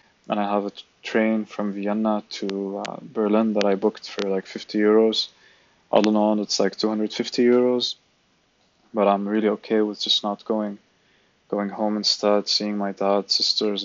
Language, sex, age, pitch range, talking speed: English, male, 20-39, 100-110 Hz, 170 wpm